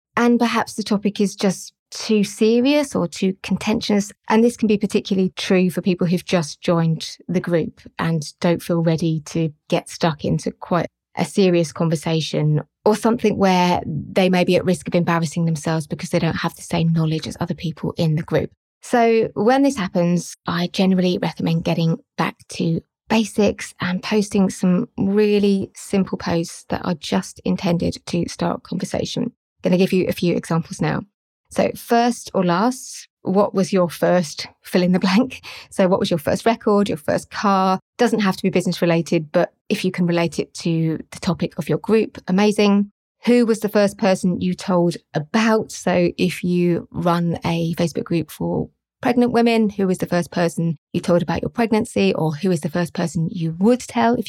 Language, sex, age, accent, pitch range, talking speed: English, female, 20-39, British, 170-210 Hz, 190 wpm